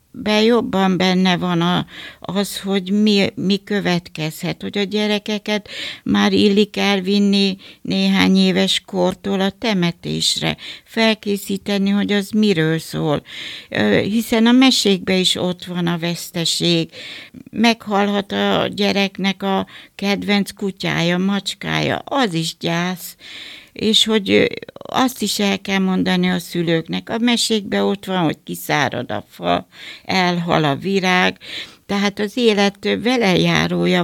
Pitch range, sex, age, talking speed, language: 175-210 Hz, female, 60-79, 120 wpm, Hungarian